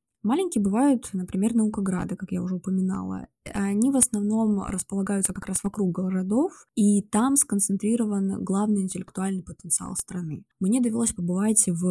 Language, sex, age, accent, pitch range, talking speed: Russian, female, 20-39, native, 185-215 Hz, 135 wpm